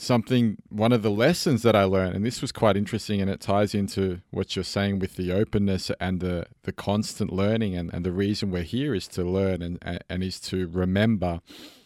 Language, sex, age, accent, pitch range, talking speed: English, male, 20-39, Australian, 95-110 Hz, 220 wpm